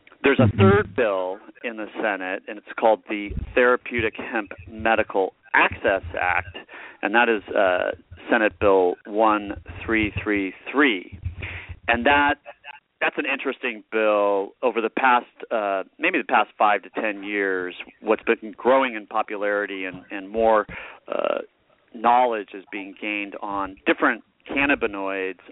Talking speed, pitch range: 130 wpm, 95-115 Hz